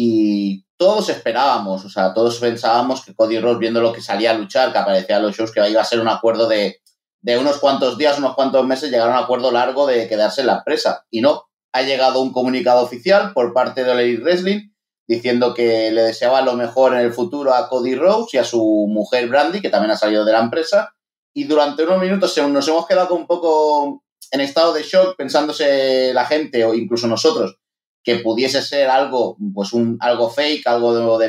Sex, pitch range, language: male, 115-155 Hz, Spanish